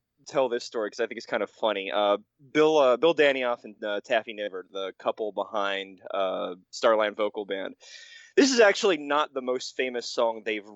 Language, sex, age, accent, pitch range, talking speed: English, male, 20-39, American, 115-165 Hz, 195 wpm